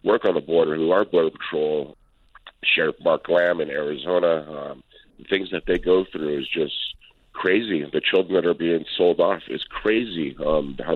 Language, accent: English, American